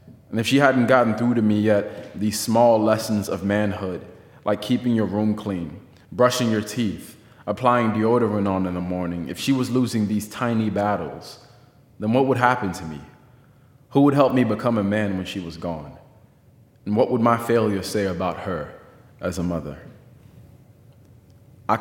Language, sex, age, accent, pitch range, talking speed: English, male, 20-39, American, 95-120 Hz, 175 wpm